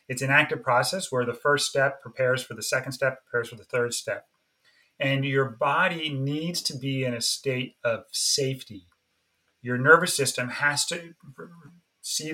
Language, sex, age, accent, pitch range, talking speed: English, male, 30-49, American, 120-140 Hz, 170 wpm